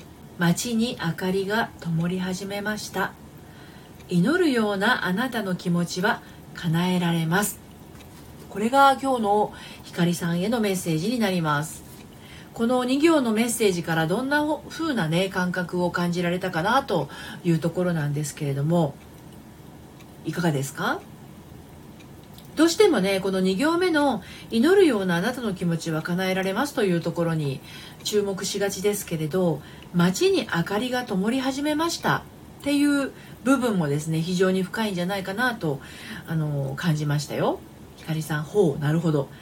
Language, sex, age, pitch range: Japanese, female, 40-59, 170-225 Hz